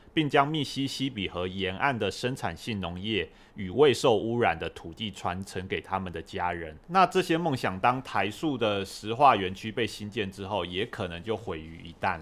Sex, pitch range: male, 95-125 Hz